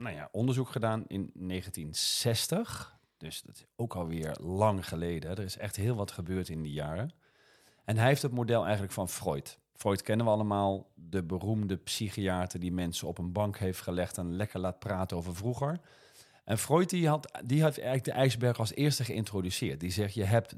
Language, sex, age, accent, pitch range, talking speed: Dutch, male, 40-59, Dutch, 95-135 Hz, 190 wpm